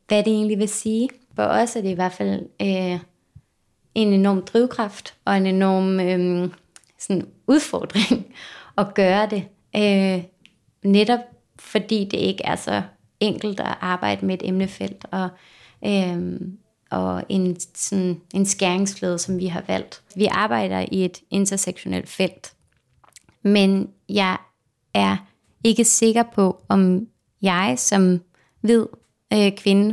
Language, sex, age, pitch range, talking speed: Danish, female, 30-49, 180-210 Hz, 130 wpm